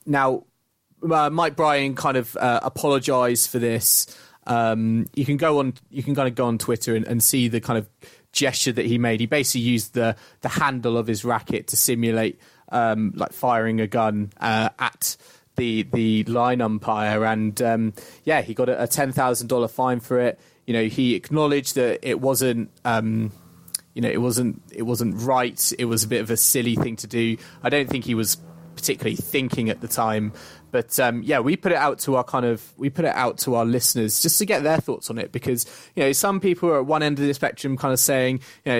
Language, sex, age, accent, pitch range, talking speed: English, male, 20-39, British, 115-140 Hz, 225 wpm